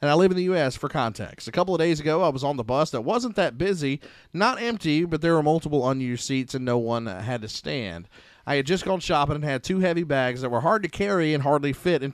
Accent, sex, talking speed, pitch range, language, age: American, male, 270 wpm, 120-160 Hz, English, 30-49